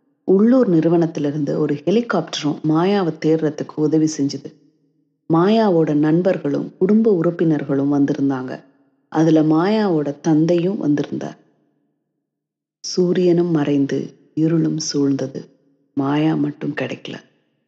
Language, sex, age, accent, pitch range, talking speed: Tamil, female, 30-49, native, 145-170 Hz, 80 wpm